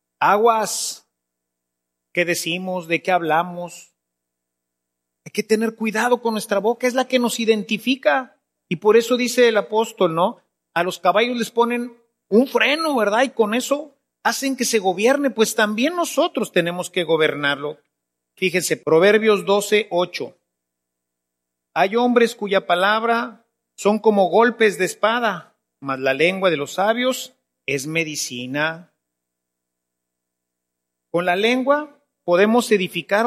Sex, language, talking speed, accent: male, Spanish, 130 wpm, Mexican